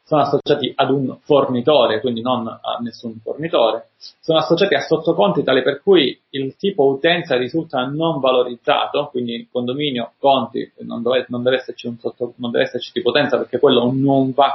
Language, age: Italian, 30-49